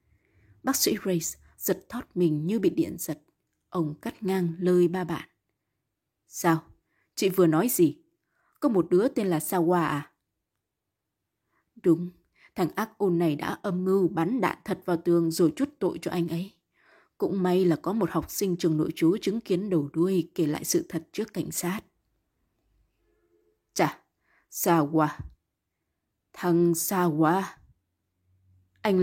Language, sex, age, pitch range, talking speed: Vietnamese, female, 20-39, 155-195 Hz, 150 wpm